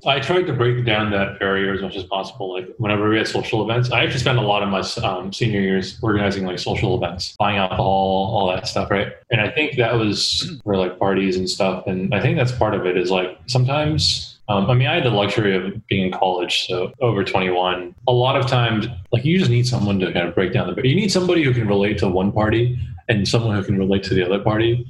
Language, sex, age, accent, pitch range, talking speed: English, male, 20-39, American, 100-130 Hz, 255 wpm